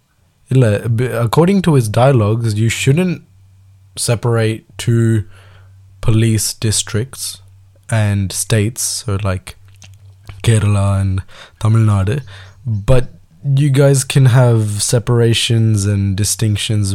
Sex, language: male, Tamil